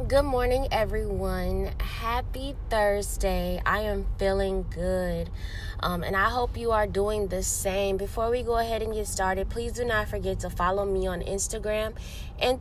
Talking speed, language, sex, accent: 165 wpm, English, female, American